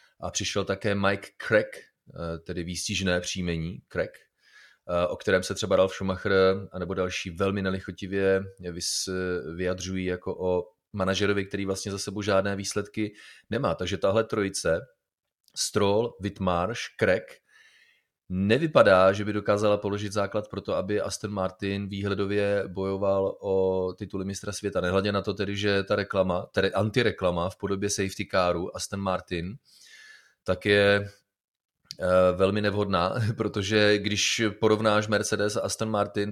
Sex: male